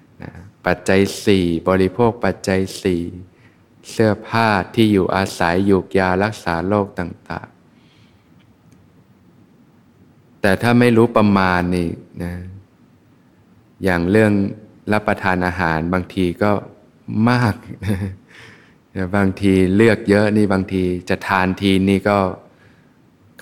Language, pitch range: Thai, 90-105 Hz